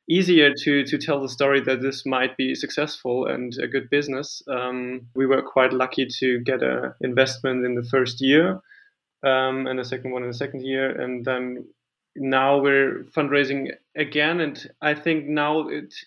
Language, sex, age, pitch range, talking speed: English, male, 20-39, 130-150 Hz, 180 wpm